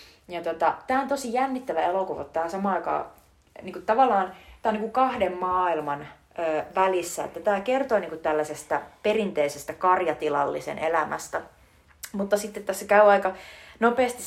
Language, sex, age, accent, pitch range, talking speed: Finnish, female, 30-49, native, 160-210 Hz, 120 wpm